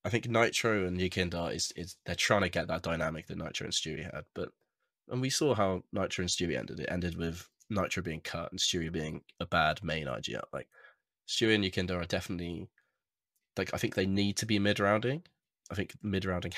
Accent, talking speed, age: British, 205 wpm, 20-39